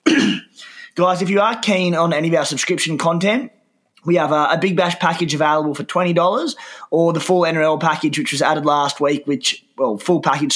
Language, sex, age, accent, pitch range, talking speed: English, male, 20-39, Australian, 135-170 Hz, 200 wpm